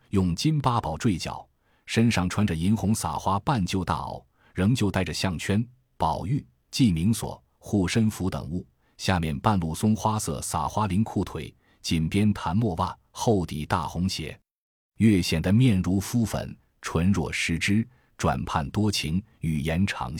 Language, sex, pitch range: Chinese, male, 80-110 Hz